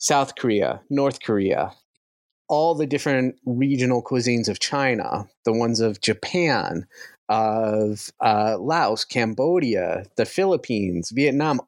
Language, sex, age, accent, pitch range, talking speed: English, male, 30-49, American, 115-145 Hz, 115 wpm